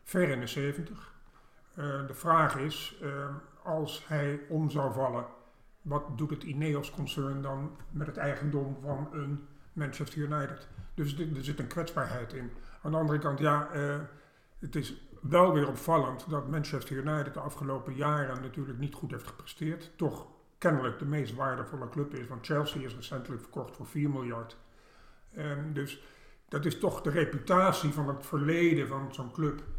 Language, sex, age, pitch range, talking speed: Dutch, male, 50-69, 135-155 Hz, 165 wpm